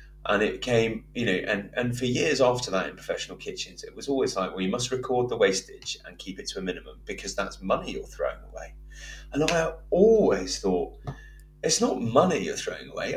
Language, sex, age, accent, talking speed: English, male, 30-49, British, 210 wpm